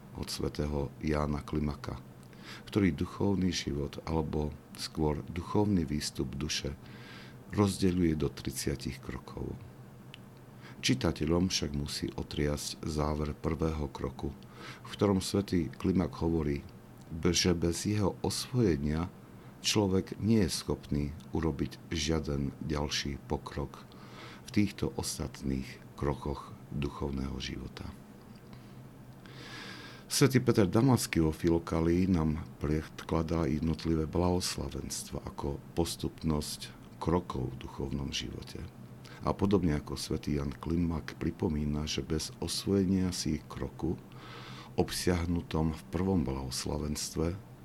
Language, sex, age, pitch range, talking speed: Slovak, male, 60-79, 70-85 Hz, 95 wpm